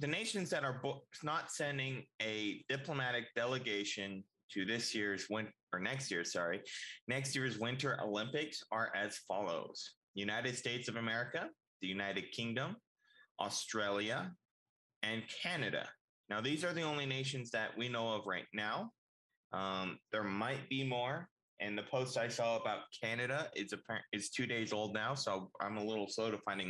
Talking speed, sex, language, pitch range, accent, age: 160 wpm, male, English, 100-135 Hz, American, 20-39